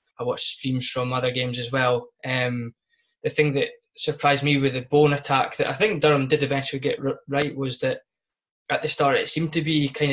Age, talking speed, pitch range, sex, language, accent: 20-39, 215 wpm, 125-145 Hz, male, English, British